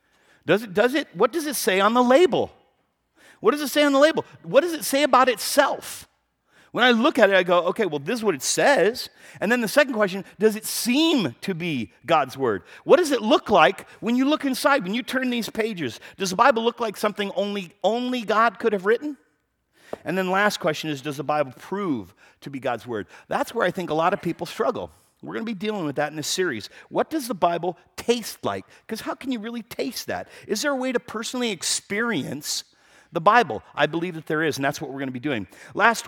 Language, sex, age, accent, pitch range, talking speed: English, male, 50-69, American, 155-235 Hz, 235 wpm